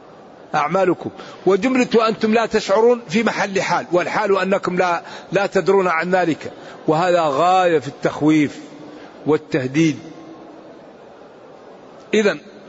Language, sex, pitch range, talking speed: Arabic, male, 170-205 Hz, 100 wpm